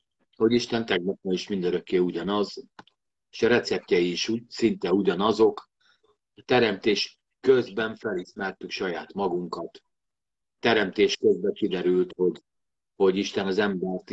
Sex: male